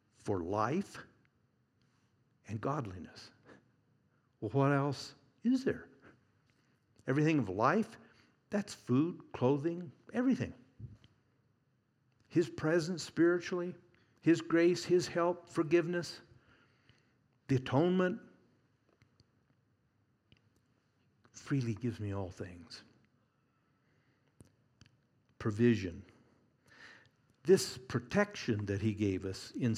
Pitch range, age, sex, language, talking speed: 110-135 Hz, 60-79, male, English, 80 wpm